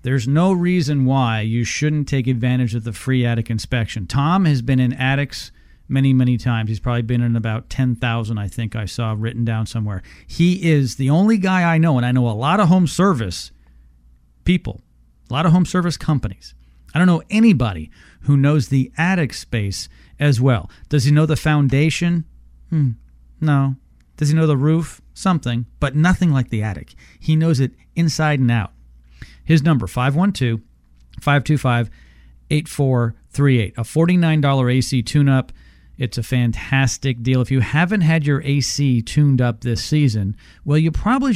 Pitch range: 110-150 Hz